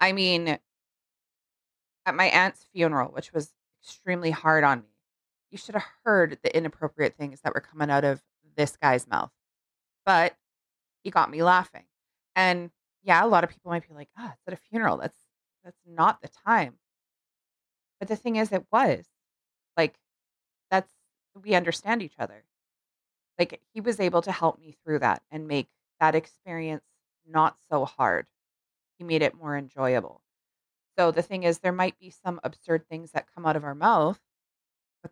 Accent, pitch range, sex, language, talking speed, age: American, 145-185 Hz, female, English, 175 wpm, 30-49